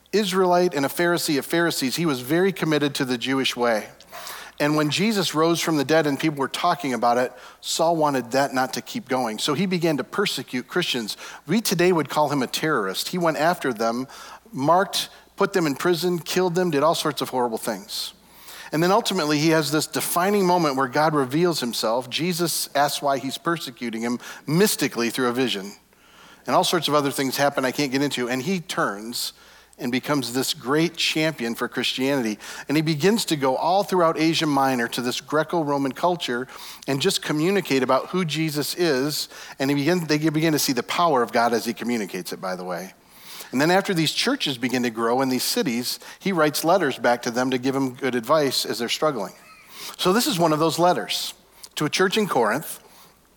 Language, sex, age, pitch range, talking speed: English, male, 40-59, 130-170 Hz, 200 wpm